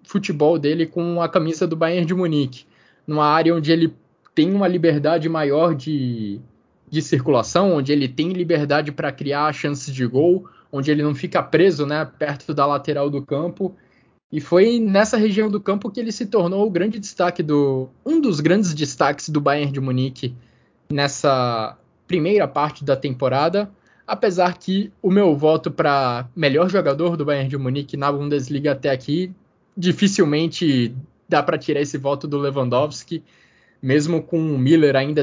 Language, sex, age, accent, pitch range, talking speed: Portuguese, male, 20-39, Brazilian, 140-165 Hz, 160 wpm